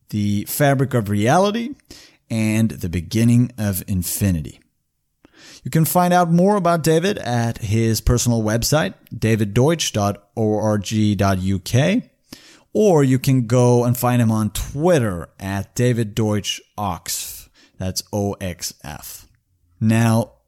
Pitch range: 105-130 Hz